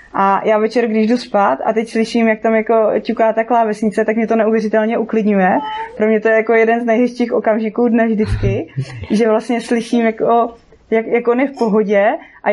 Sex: female